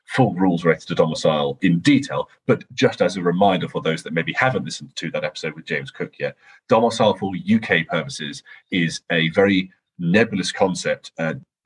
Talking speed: 180 wpm